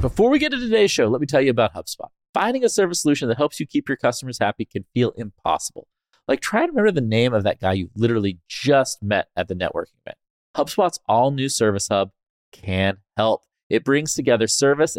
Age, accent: 30-49, American